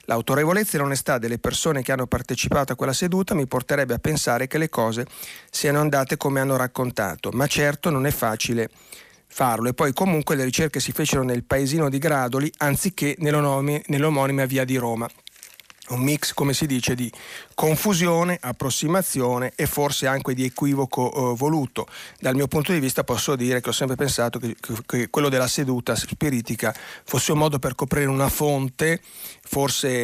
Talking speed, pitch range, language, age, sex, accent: 170 wpm, 125-145 Hz, Italian, 40-59, male, native